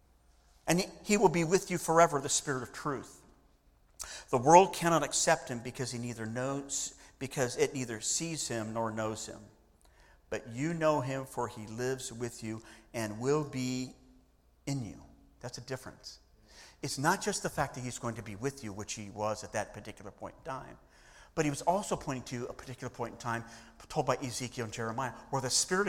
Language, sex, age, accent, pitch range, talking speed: English, male, 50-69, American, 115-165 Hz, 200 wpm